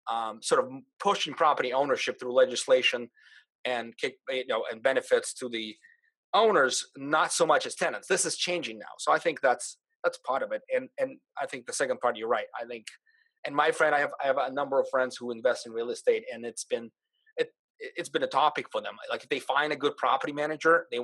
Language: English